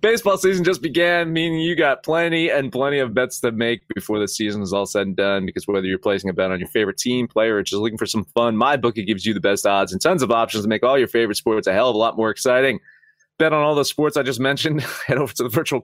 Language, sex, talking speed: English, male, 290 wpm